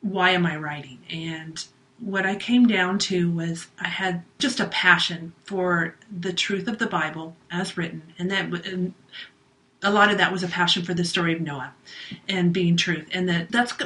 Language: English